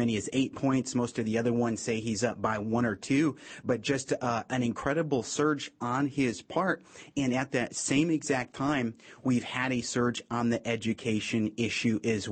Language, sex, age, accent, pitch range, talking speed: English, male, 30-49, American, 115-140 Hz, 195 wpm